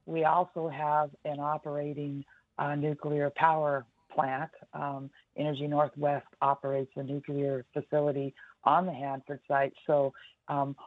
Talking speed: 120 wpm